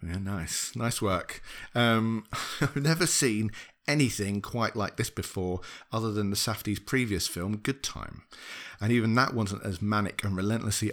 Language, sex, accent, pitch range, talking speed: English, male, British, 95-115 Hz, 160 wpm